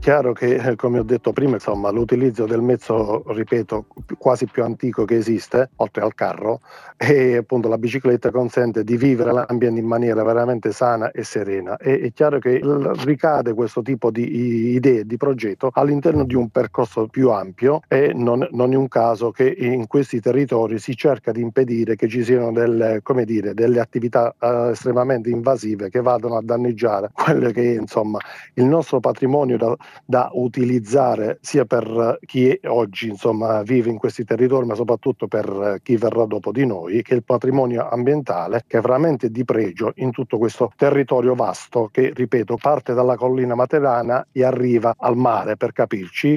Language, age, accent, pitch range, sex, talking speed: Italian, 50-69, native, 115-130 Hz, male, 170 wpm